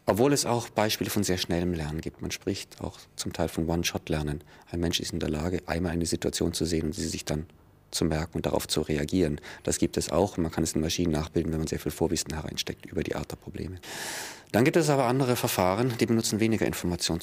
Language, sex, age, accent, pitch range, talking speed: German, male, 40-59, German, 80-100 Hz, 235 wpm